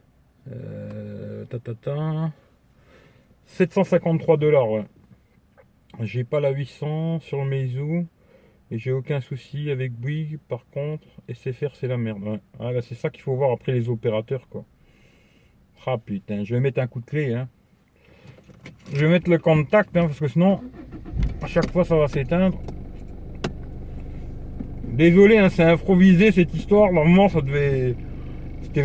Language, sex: Chinese, male